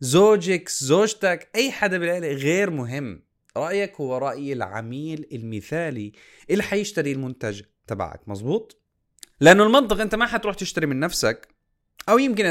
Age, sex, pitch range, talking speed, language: 20-39, male, 115-175 Hz, 130 wpm, Arabic